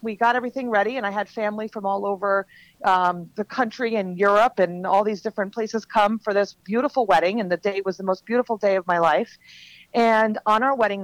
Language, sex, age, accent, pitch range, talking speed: English, female, 40-59, American, 185-225 Hz, 225 wpm